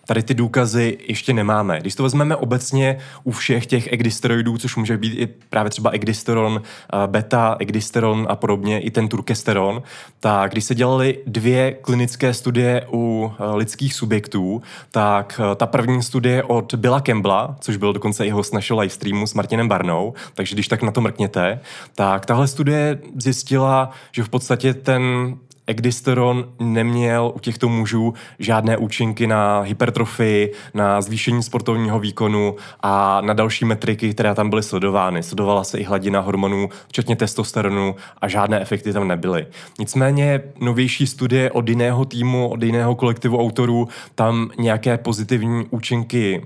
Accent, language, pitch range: native, Czech, 105-125 Hz